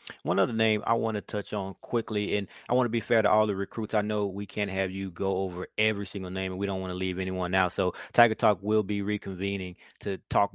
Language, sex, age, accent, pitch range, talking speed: English, male, 30-49, American, 100-115 Hz, 260 wpm